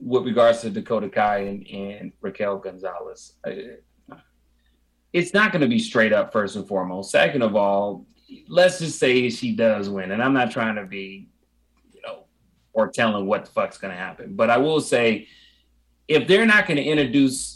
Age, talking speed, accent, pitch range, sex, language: 30-49, 185 wpm, American, 95-140 Hz, male, English